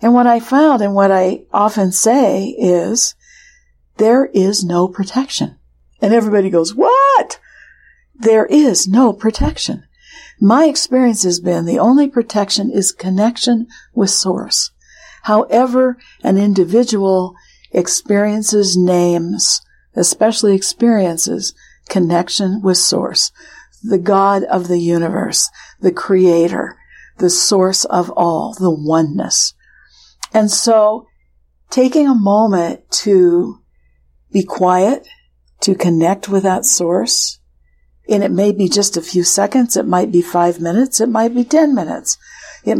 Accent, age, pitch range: American, 60-79, 180-230 Hz